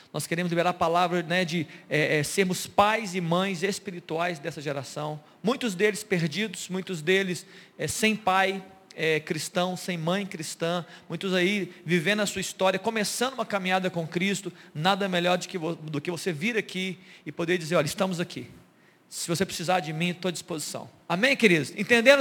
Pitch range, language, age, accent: 170-205 Hz, Portuguese, 40-59, Brazilian